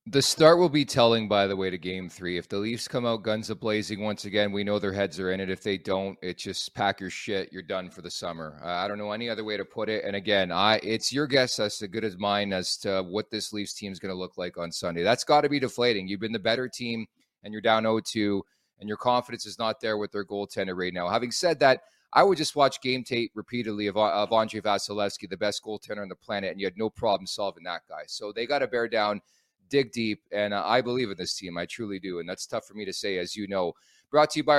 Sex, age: male, 30-49